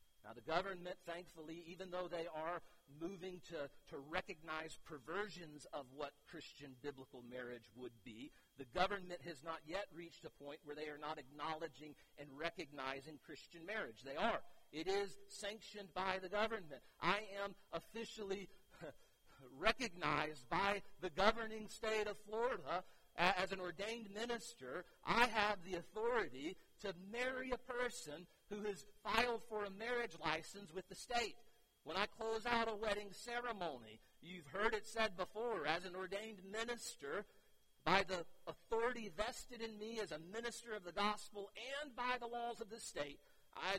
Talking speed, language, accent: 155 wpm, English, American